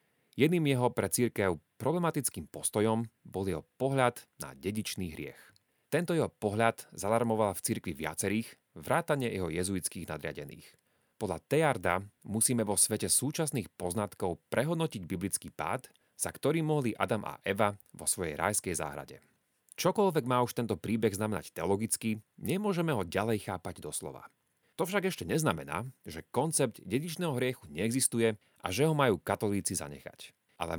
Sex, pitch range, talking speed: male, 95-135 Hz, 140 wpm